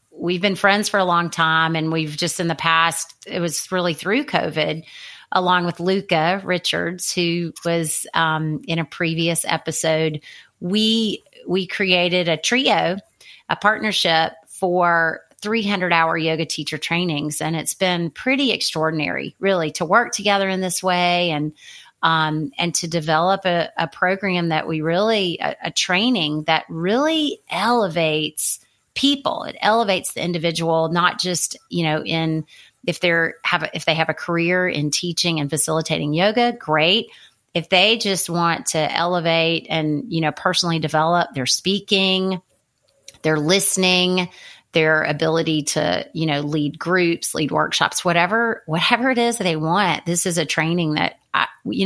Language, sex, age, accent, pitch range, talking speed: English, female, 30-49, American, 160-185 Hz, 150 wpm